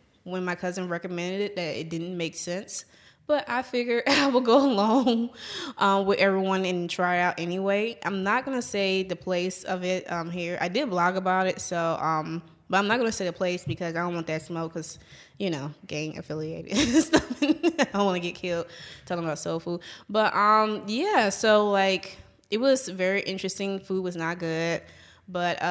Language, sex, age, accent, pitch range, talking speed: English, female, 20-39, American, 170-205 Hz, 200 wpm